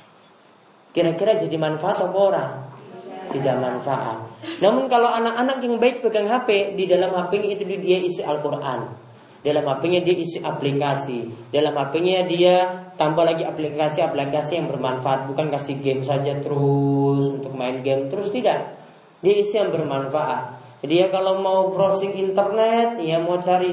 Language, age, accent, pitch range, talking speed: Indonesian, 20-39, native, 150-220 Hz, 145 wpm